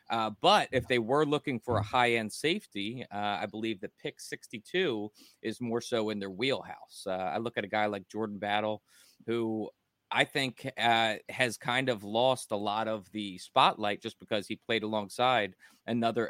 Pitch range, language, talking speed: 100-115 Hz, English, 190 wpm